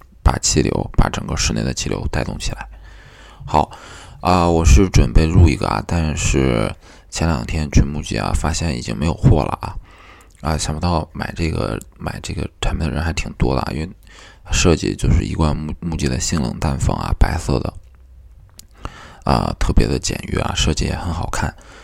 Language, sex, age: Chinese, male, 20-39